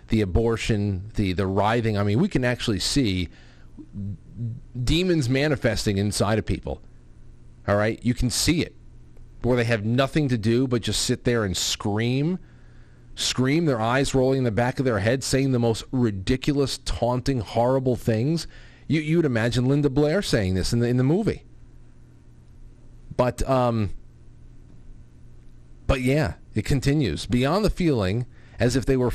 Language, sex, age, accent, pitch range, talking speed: English, male, 40-59, American, 105-135 Hz, 160 wpm